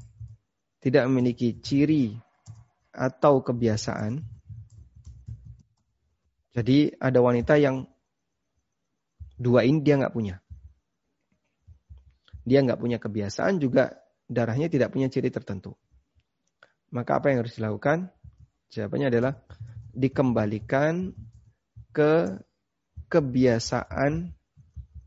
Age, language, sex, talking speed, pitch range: 30-49, Indonesian, male, 80 wpm, 110-135 Hz